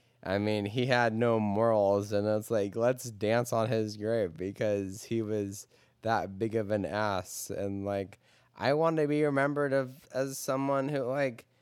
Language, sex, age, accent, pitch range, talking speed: English, male, 20-39, American, 95-115 Hz, 170 wpm